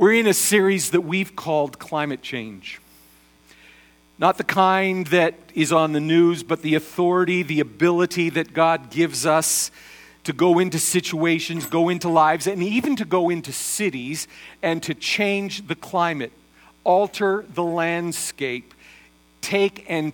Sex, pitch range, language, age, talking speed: male, 150-185 Hz, English, 50-69, 145 wpm